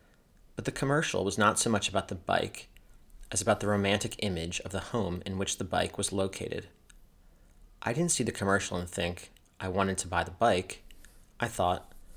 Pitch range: 95-110 Hz